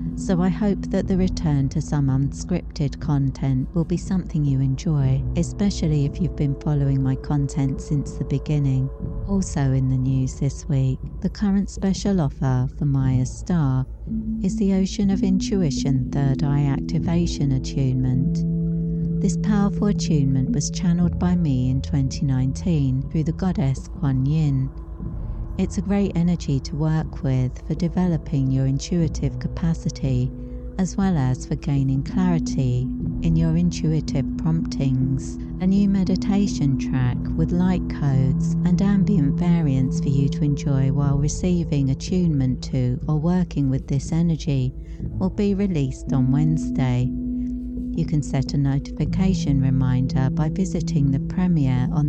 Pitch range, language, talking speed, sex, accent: 130-170 Hz, English, 140 wpm, female, British